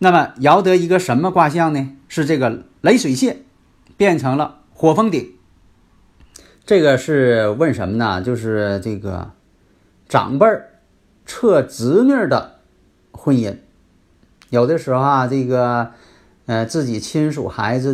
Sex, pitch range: male, 115-160 Hz